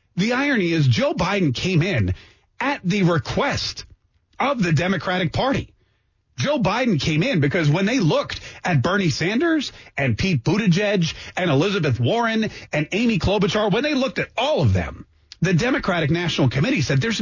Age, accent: 30-49, American